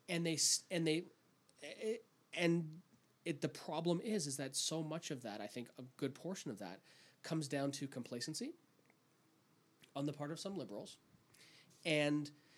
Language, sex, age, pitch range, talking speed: English, male, 30-49, 145-180 Hz, 160 wpm